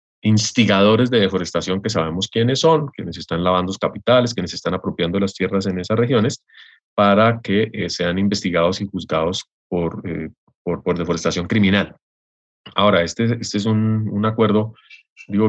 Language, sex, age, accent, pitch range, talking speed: English, male, 30-49, Colombian, 90-105 Hz, 155 wpm